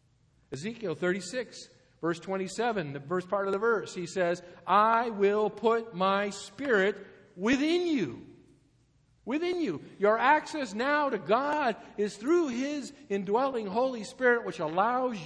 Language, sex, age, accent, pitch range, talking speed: English, male, 50-69, American, 135-205 Hz, 135 wpm